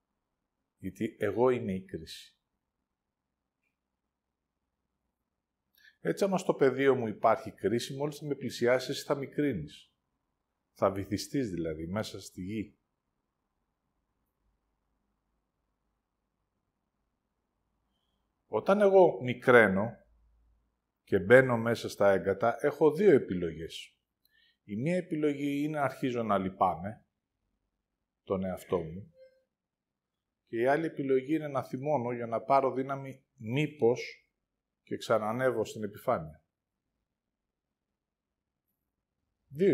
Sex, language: male, Greek